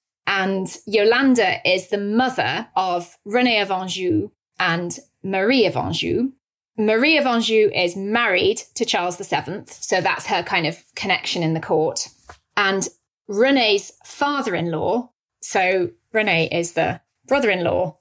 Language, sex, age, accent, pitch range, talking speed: English, female, 30-49, British, 185-265 Hz, 125 wpm